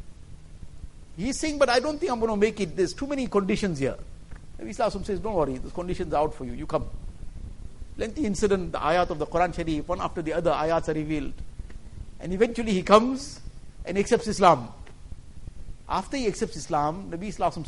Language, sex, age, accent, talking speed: English, male, 50-69, Indian, 195 wpm